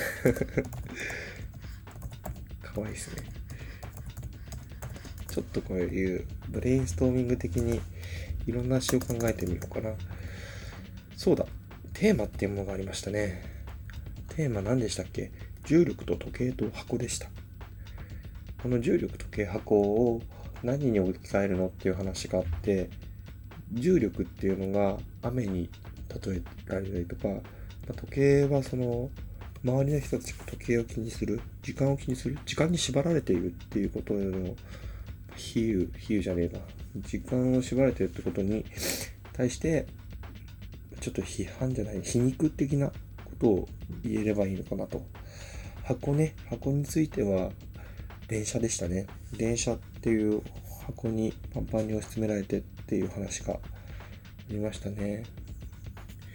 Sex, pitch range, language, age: male, 95-120 Hz, Japanese, 20-39